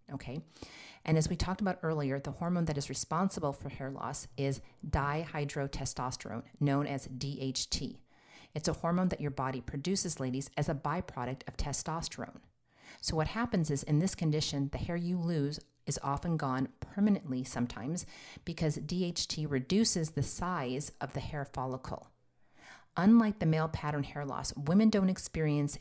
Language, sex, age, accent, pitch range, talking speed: English, female, 40-59, American, 140-165 Hz, 155 wpm